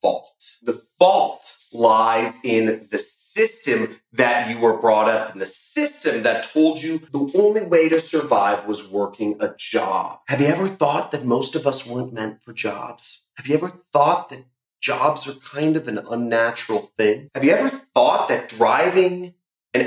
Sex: male